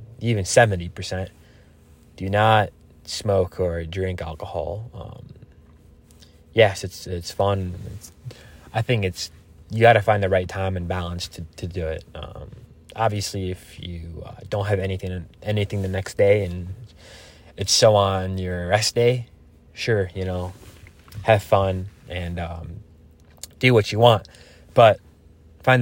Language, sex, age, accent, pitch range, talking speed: English, male, 20-39, American, 80-105 Hz, 145 wpm